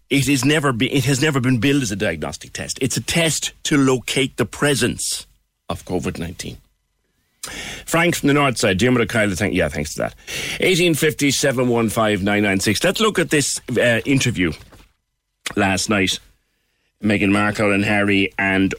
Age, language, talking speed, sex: 40-59, English, 170 wpm, male